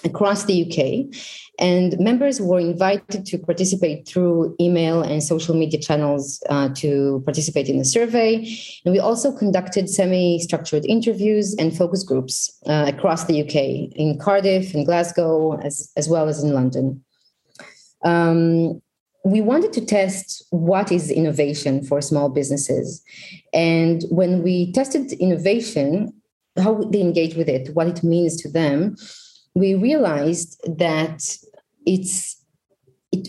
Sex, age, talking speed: female, 30-49, 135 wpm